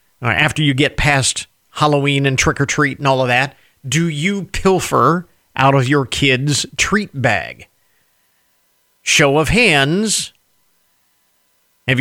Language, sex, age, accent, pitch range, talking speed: English, male, 50-69, American, 135-185 Hz, 120 wpm